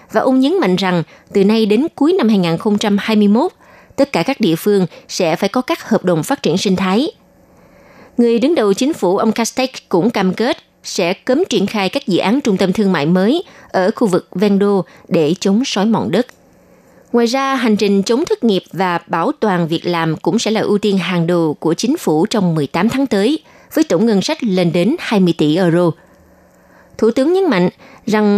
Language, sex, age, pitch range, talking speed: Vietnamese, female, 20-39, 180-240 Hz, 205 wpm